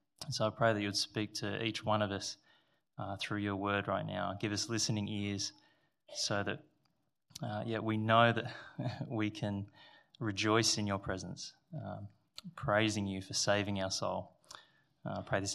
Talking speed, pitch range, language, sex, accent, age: 180 wpm, 110-150 Hz, English, male, Australian, 20-39